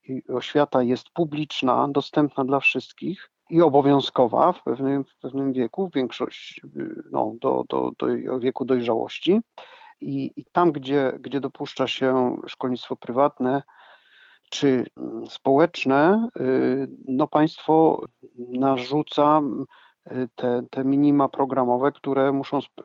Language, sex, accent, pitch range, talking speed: Polish, male, native, 130-150 Hz, 110 wpm